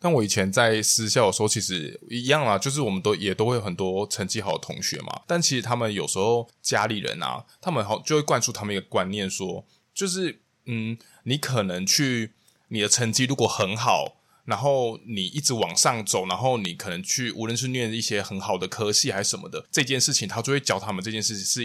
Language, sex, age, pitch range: Chinese, male, 20-39, 105-135 Hz